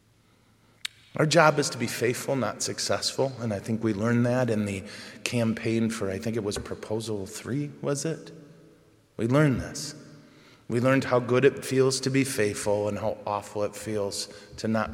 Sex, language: male, English